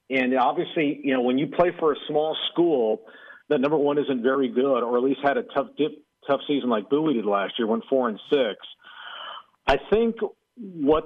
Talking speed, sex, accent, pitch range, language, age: 205 wpm, male, American, 120-150 Hz, English, 50-69